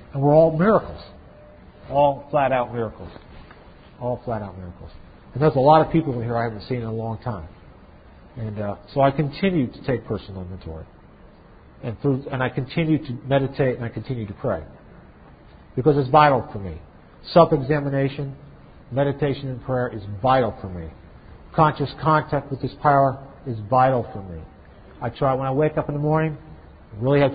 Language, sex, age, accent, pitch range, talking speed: English, male, 50-69, American, 105-150 Hz, 175 wpm